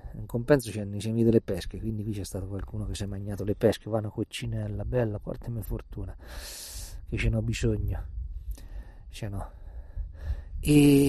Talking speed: 170 wpm